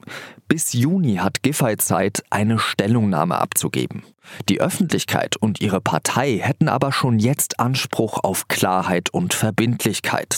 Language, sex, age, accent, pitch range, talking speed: German, male, 40-59, German, 105-145 Hz, 125 wpm